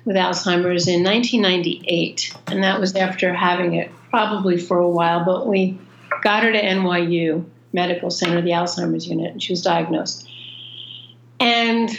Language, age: English, 50-69